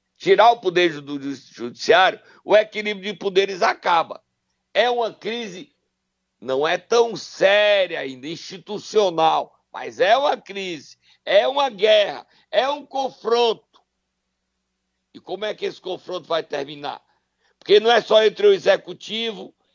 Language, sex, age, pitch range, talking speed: Portuguese, male, 60-79, 160-235 Hz, 135 wpm